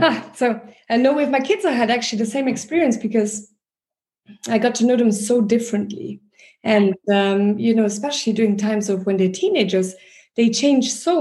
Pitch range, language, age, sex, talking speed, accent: 195-230 Hz, English, 20-39, female, 180 wpm, German